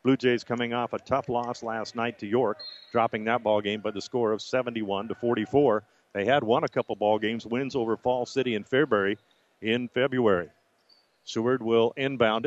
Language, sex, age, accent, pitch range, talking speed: English, male, 50-69, American, 115-130 Hz, 190 wpm